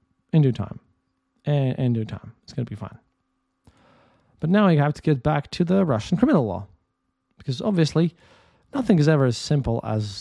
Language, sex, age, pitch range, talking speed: English, male, 20-39, 115-160 Hz, 180 wpm